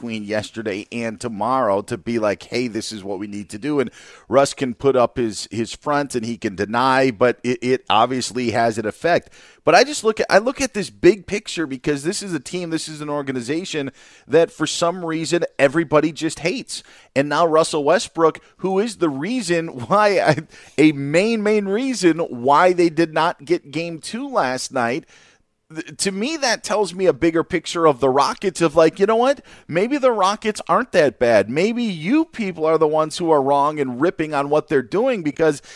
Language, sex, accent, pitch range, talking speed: English, male, American, 130-175 Hz, 200 wpm